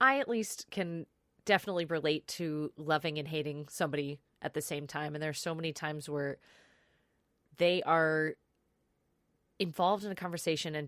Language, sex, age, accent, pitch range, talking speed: English, female, 20-39, American, 150-190 Hz, 160 wpm